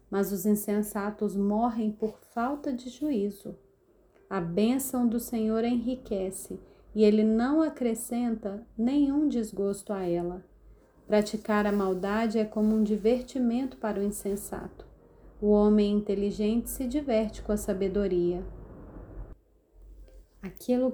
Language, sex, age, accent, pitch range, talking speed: Portuguese, female, 30-49, Brazilian, 200-235 Hz, 115 wpm